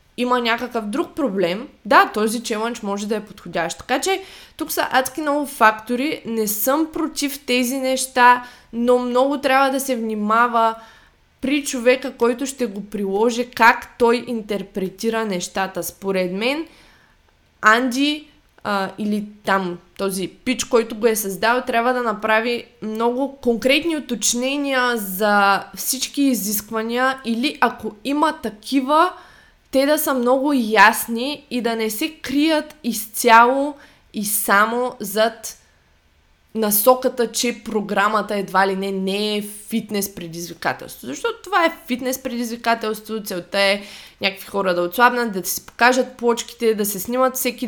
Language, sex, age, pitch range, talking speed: Bulgarian, female, 20-39, 210-255 Hz, 135 wpm